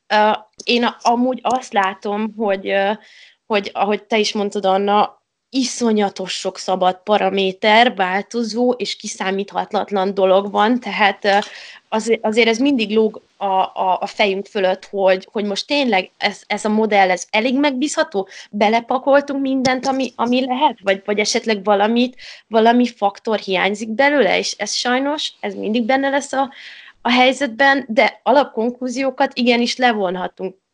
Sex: female